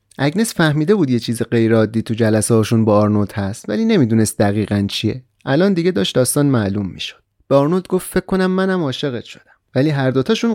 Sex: male